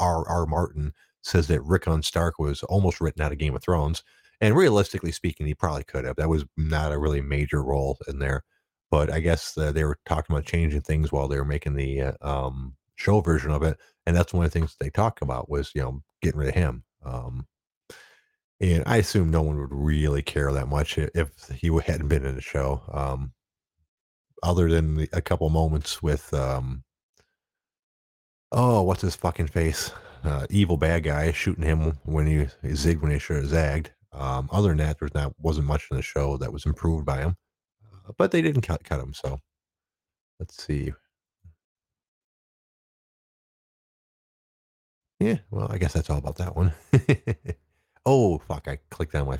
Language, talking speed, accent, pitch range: English, 190 wpm, American, 70-85 Hz